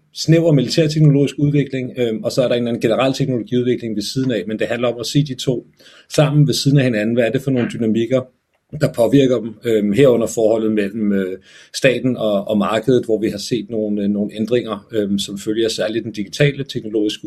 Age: 40-59